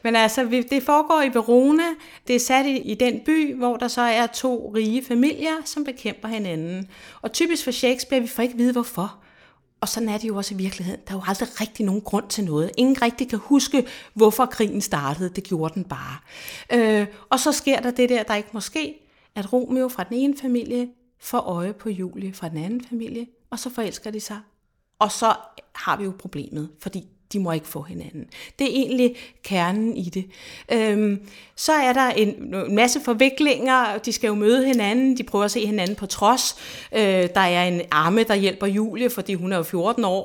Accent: native